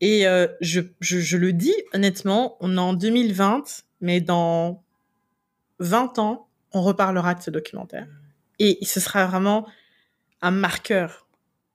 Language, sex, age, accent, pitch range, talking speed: English, female, 20-39, French, 175-210 Hz, 140 wpm